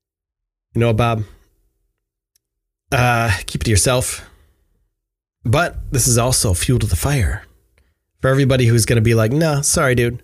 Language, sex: English, male